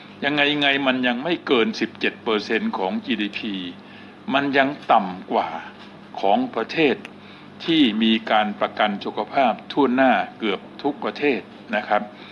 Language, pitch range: Thai, 105-140 Hz